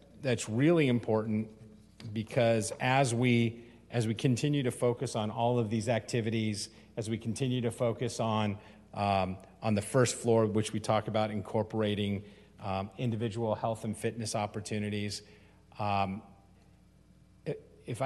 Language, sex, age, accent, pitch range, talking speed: English, male, 40-59, American, 100-120 Hz, 135 wpm